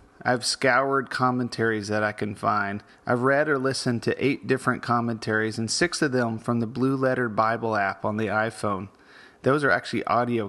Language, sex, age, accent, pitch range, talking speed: English, male, 30-49, American, 105-135 Hz, 185 wpm